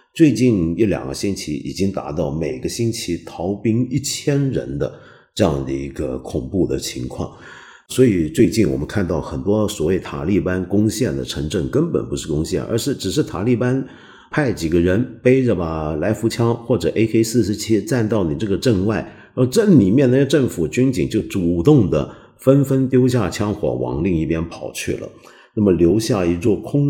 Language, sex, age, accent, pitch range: Chinese, male, 50-69, native, 90-125 Hz